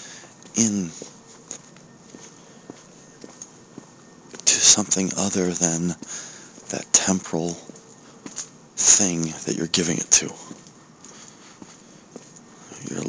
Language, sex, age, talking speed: English, male, 40-59, 65 wpm